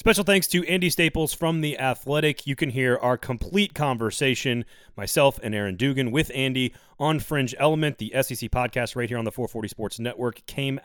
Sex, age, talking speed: male, 30-49, 190 wpm